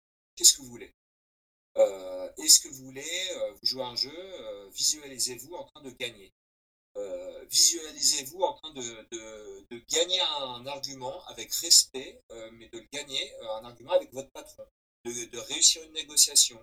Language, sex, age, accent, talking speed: French, male, 40-59, French, 165 wpm